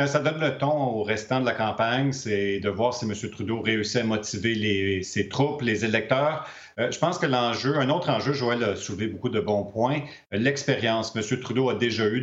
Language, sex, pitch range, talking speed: French, male, 105-130 Hz, 205 wpm